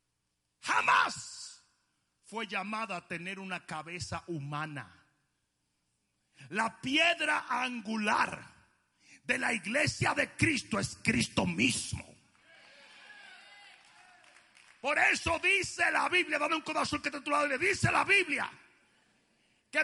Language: Spanish